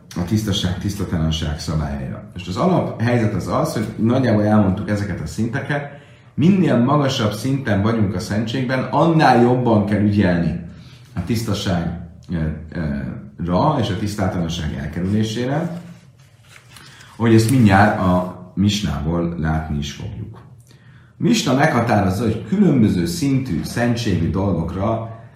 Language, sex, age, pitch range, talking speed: Hungarian, male, 30-49, 90-120 Hz, 115 wpm